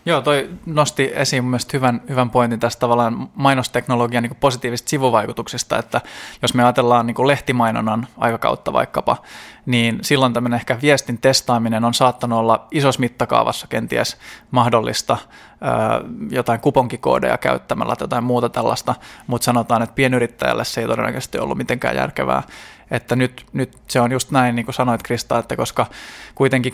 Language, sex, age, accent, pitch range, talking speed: Finnish, male, 20-39, native, 115-130 Hz, 150 wpm